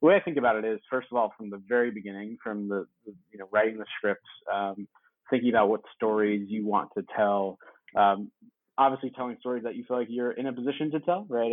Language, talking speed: English, 240 wpm